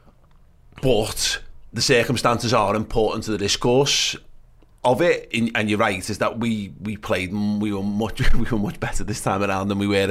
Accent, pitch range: British, 100-125 Hz